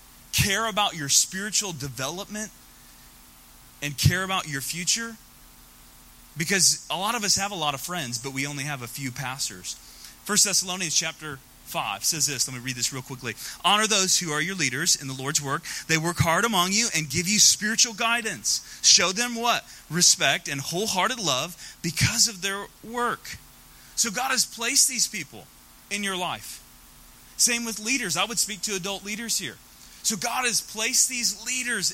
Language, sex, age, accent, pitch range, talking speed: English, male, 30-49, American, 135-215 Hz, 180 wpm